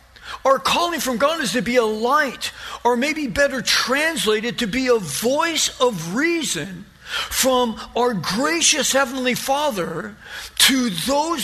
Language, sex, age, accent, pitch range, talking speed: English, male, 50-69, American, 210-255 Hz, 135 wpm